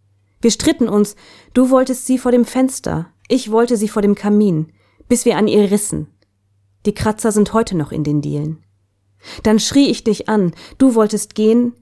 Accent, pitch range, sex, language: German, 155-225 Hz, female, German